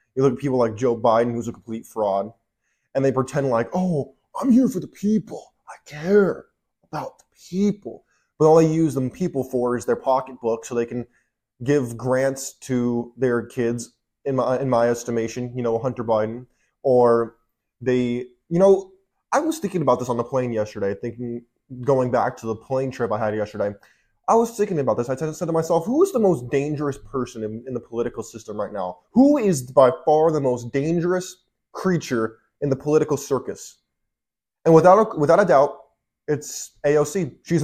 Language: English